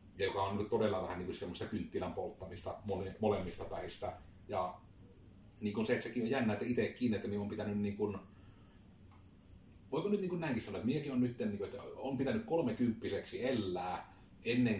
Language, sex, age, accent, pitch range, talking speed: Finnish, male, 30-49, native, 95-110 Hz, 185 wpm